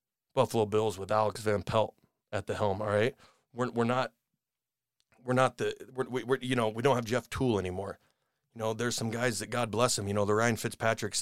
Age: 30-49